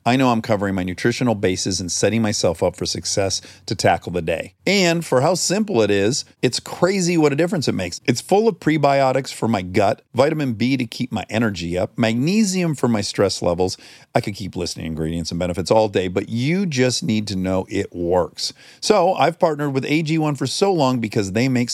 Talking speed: 215 wpm